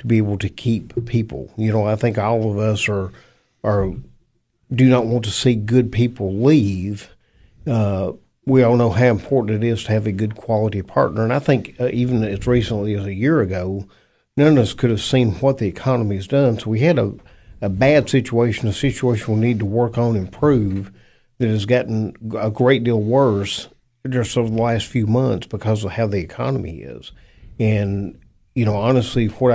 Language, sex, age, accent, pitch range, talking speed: English, male, 50-69, American, 100-120 Hz, 200 wpm